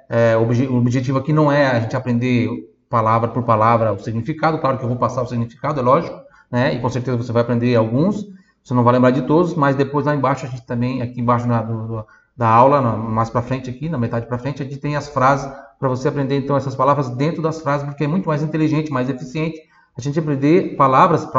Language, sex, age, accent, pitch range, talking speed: Italian, male, 30-49, Brazilian, 120-150 Hz, 240 wpm